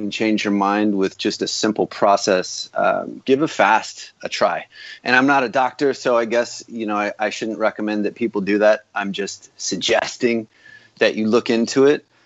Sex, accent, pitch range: male, American, 105-125 Hz